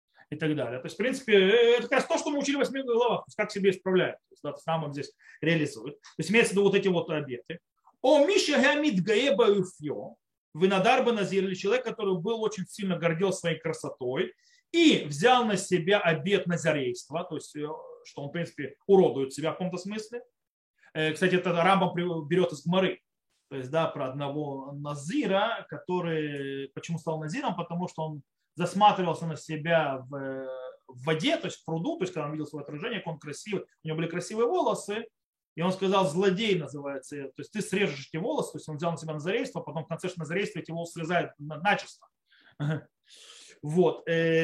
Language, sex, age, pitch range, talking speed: Russian, male, 30-49, 155-210 Hz, 185 wpm